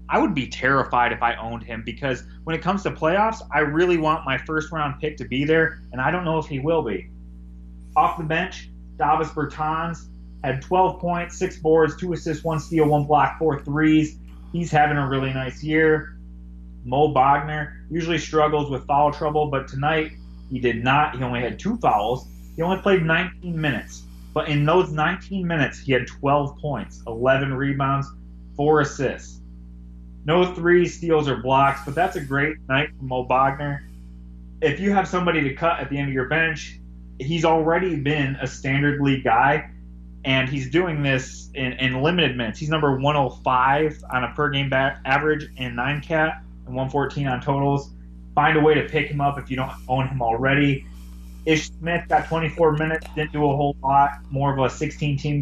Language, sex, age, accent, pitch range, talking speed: English, male, 30-49, American, 125-155 Hz, 185 wpm